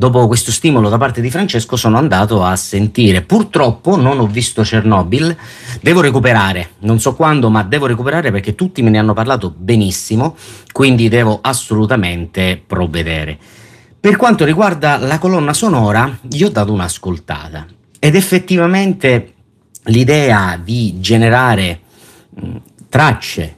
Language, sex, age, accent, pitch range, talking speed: Italian, male, 40-59, native, 95-125 Hz, 130 wpm